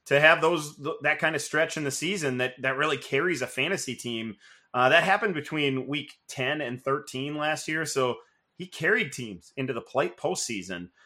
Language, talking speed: English, 190 wpm